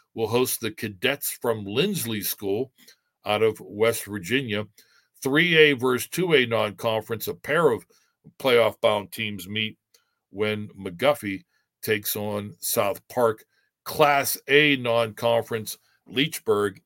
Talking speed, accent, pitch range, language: 110 wpm, American, 105-145 Hz, English